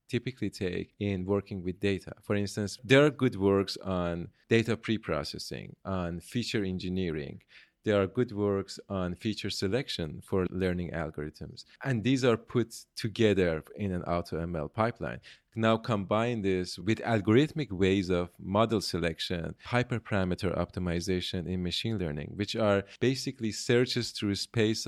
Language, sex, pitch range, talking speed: English, male, 90-115 Hz, 140 wpm